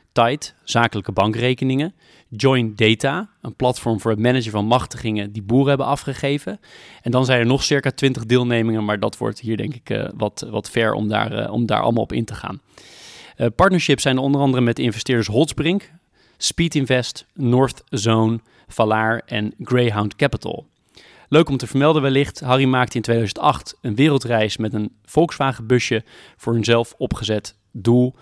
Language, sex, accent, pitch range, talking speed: Dutch, male, Dutch, 110-135 Hz, 165 wpm